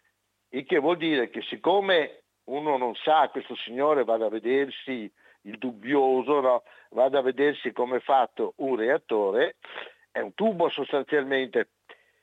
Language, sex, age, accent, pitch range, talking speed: Italian, male, 60-79, native, 135-210 Hz, 140 wpm